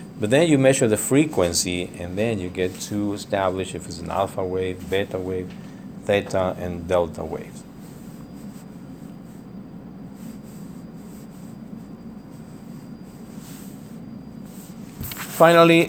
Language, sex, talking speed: English, male, 90 wpm